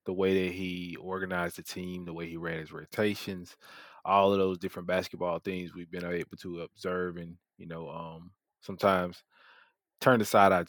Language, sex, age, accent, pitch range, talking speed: English, male, 20-39, American, 90-105 Hz, 185 wpm